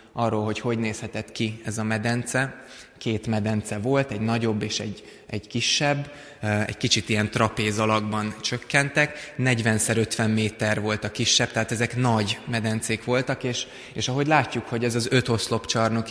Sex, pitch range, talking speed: male, 110-125 Hz, 155 wpm